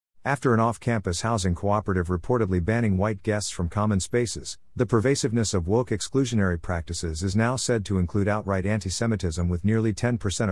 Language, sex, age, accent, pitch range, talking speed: English, male, 50-69, American, 90-115 Hz, 160 wpm